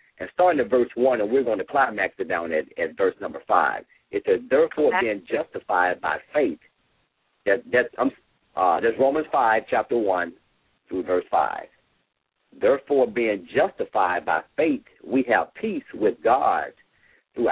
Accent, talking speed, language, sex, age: American, 160 wpm, English, male, 50-69